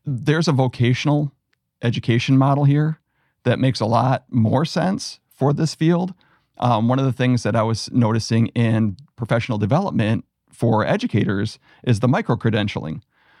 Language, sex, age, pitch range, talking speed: English, male, 40-59, 115-140 Hz, 145 wpm